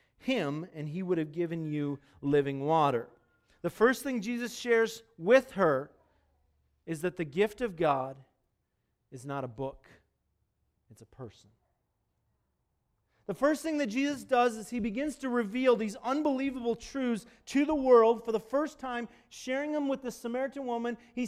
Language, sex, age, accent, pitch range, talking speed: English, male, 40-59, American, 175-260 Hz, 160 wpm